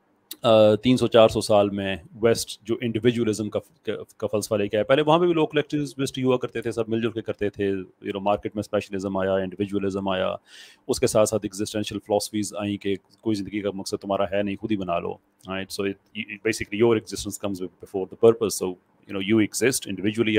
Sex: male